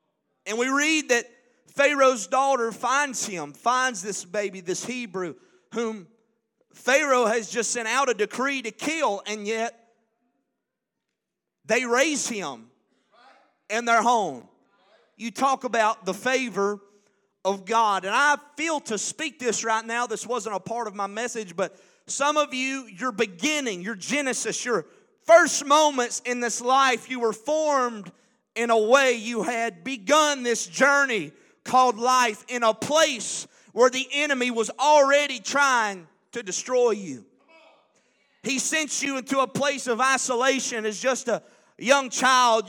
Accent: American